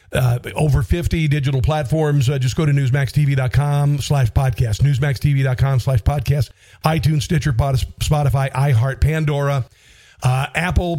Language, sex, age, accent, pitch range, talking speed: English, male, 50-69, American, 110-135 Hz, 125 wpm